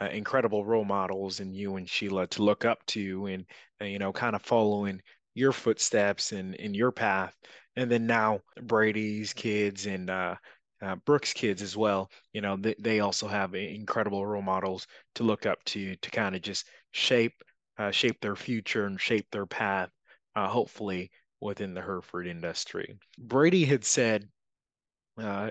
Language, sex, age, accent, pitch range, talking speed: English, male, 20-39, American, 100-115 Hz, 170 wpm